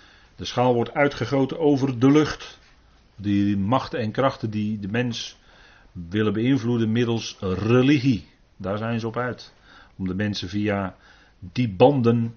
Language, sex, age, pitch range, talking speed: Dutch, male, 40-59, 90-120 Hz, 140 wpm